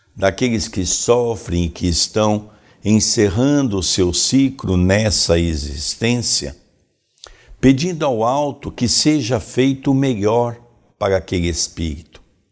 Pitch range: 95-135 Hz